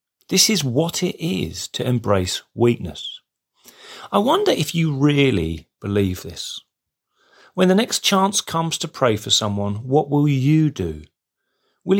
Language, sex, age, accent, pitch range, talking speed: English, male, 40-59, British, 105-155 Hz, 145 wpm